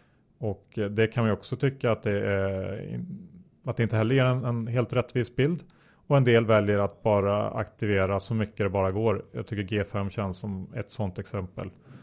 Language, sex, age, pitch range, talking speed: Swedish, male, 30-49, 100-120 Hz, 200 wpm